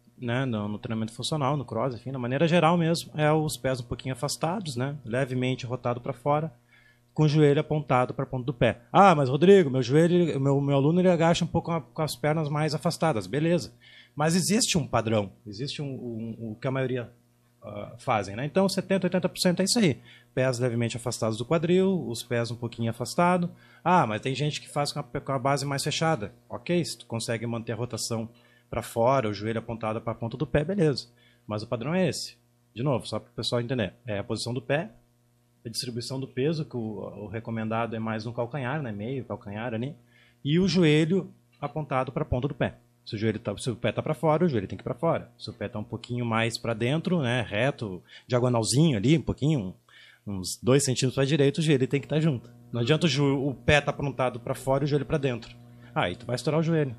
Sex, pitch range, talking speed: male, 120-150 Hz, 235 wpm